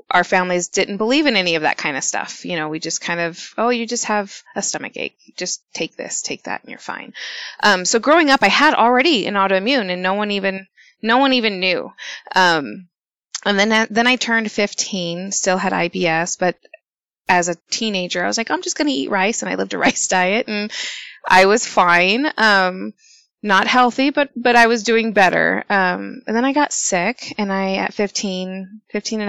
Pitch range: 180-225 Hz